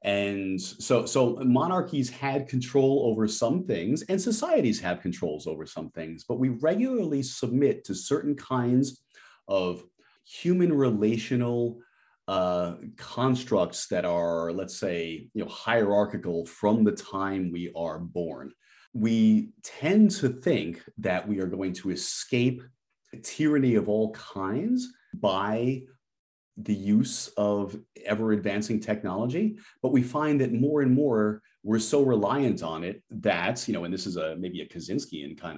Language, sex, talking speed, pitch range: English, male, 145 wpm, 95-135 Hz